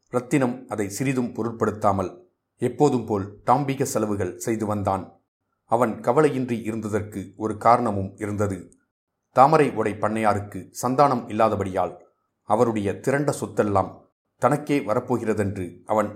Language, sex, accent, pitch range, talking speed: Tamil, male, native, 100-120 Hz, 95 wpm